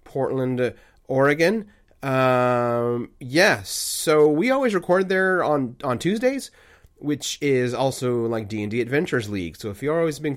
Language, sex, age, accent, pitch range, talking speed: English, male, 30-49, American, 115-150 Hz, 140 wpm